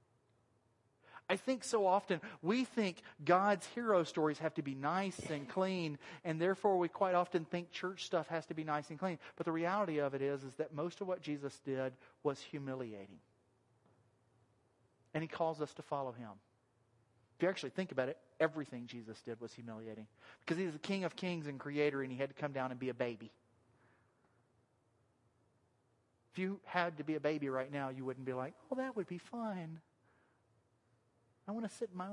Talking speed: 195 wpm